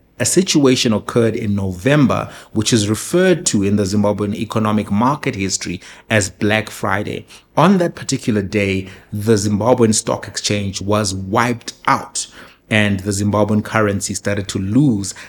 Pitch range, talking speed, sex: 100-120 Hz, 140 wpm, male